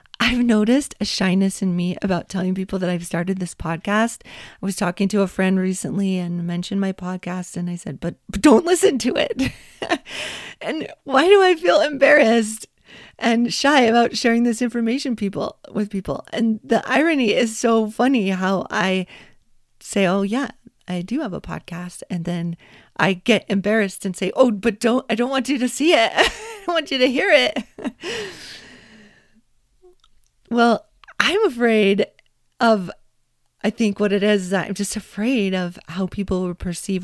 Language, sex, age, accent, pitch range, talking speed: English, female, 40-59, American, 185-245 Hz, 170 wpm